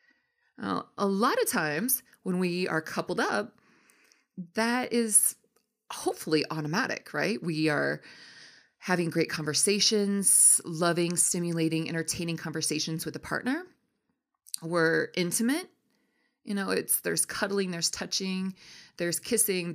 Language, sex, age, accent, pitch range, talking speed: English, female, 30-49, American, 160-230 Hz, 115 wpm